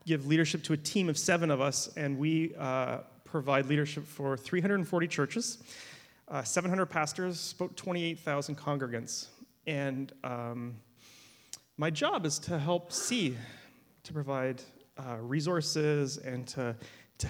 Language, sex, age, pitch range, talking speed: English, male, 30-49, 135-170 Hz, 130 wpm